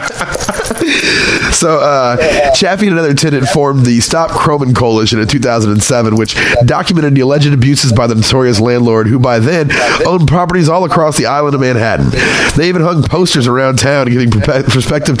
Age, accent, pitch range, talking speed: 30-49, American, 120-150 Hz, 160 wpm